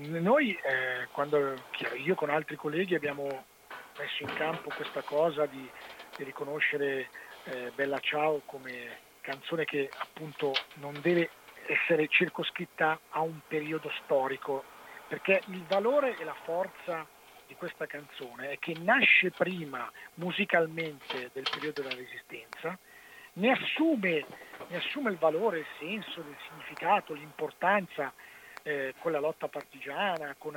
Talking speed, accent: 125 wpm, native